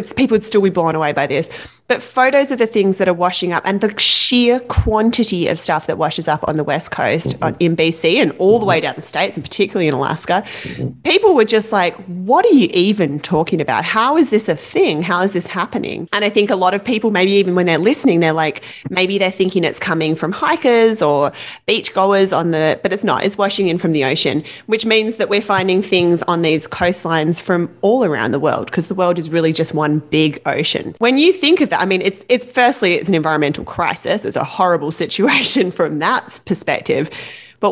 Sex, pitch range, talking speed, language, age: female, 160-215 Hz, 225 wpm, English, 30-49